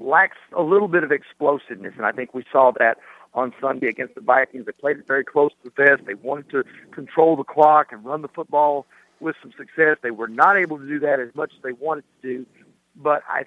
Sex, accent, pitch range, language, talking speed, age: male, American, 140-165 Hz, English, 240 wpm, 50-69